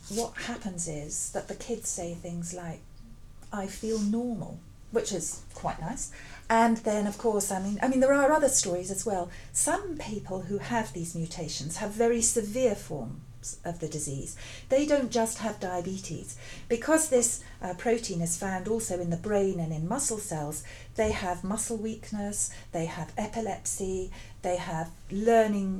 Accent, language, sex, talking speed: British, English, female, 165 wpm